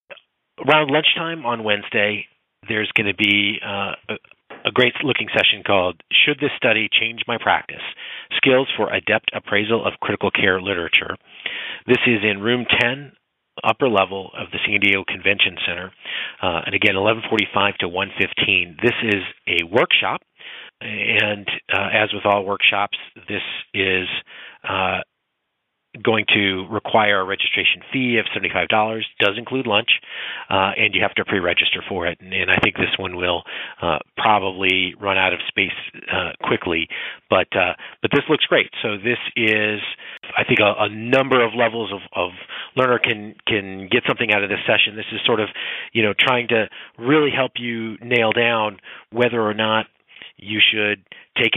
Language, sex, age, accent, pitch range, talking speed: English, male, 40-59, American, 100-120 Hz, 165 wpm